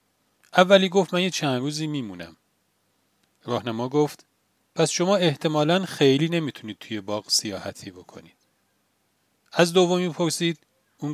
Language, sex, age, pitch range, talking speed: Persian, male, 40-59, 125-165 Hz, 120 wpm